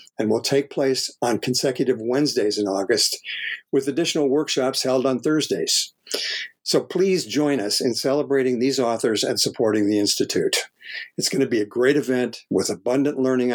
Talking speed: 165 wpm